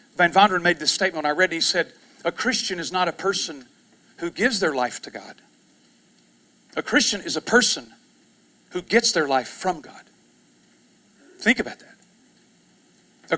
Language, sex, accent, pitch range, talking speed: English, male, American, 175-235 Hz, 175 wpm